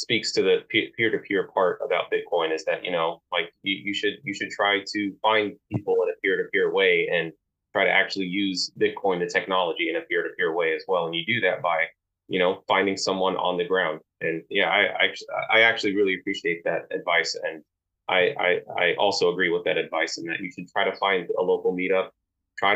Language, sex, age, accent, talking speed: English, male, 20-39, American, 215 wpm